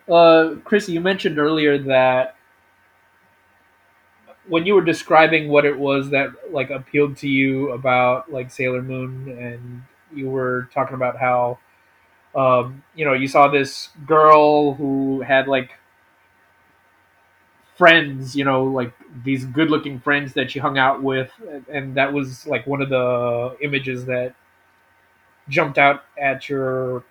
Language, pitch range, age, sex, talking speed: English, 125-150 Hz, 20-39, male, 140 wpm